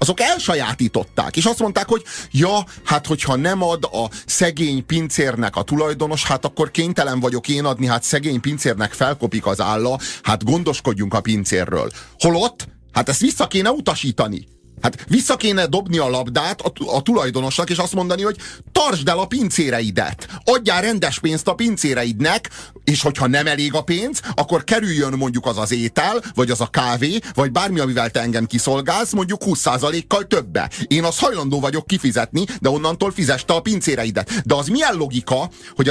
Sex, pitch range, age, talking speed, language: male, 125-180 Hz, 30-49, 165 wpm, Hungarian